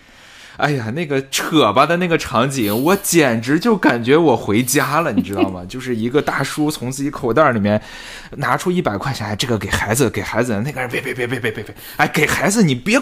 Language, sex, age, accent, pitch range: Chinese, male, 20-39, native, 90-130 Hz